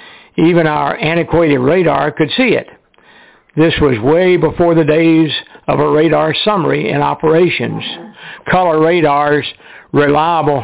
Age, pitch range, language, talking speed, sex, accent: 60-79, 145-175 Hz, English, 125 wpm, male, American